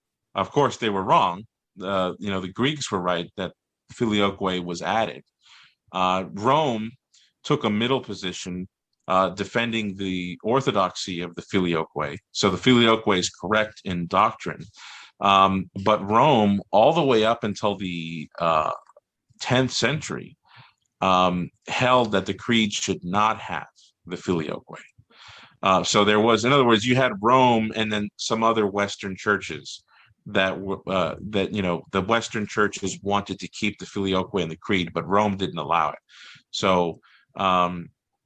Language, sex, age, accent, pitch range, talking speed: English, male, 40-59, American, 95-110 Hz, 150 wpm